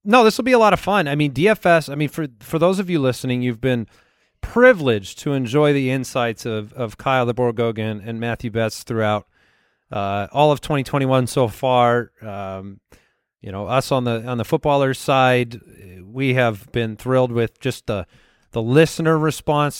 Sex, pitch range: male, 120-150 Hz